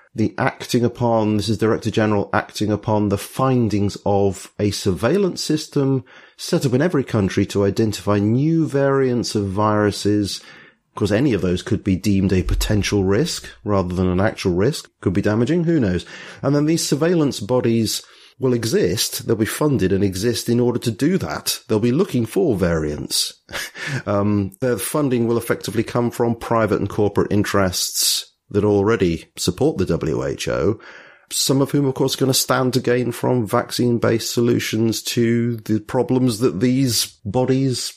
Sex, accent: male, British